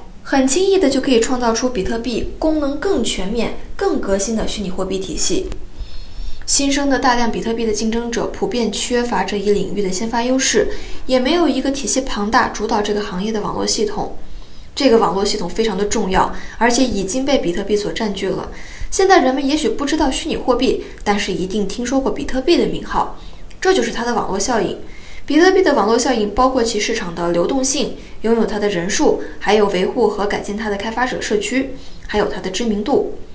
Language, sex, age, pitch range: Chinese, female, 20-39, 205-270 Hz